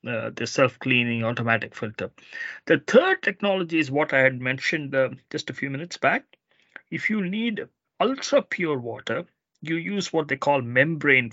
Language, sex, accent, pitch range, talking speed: English, male, Indian, 125-180 Hz, 160 wpm